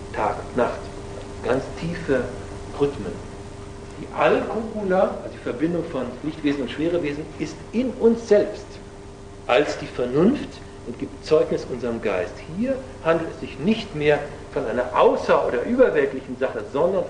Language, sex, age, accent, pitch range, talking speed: German, male, 60-79, German, 100-165 Hz, 135 wpm